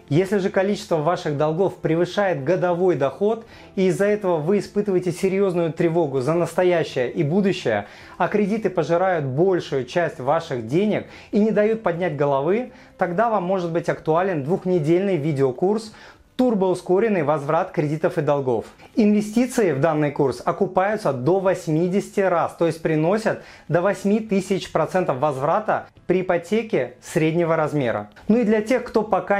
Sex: male